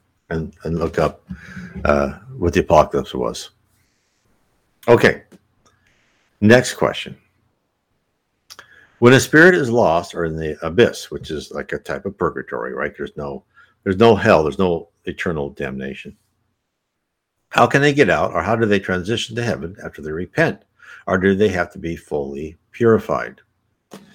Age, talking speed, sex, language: 60-79, 150 wpm, male, English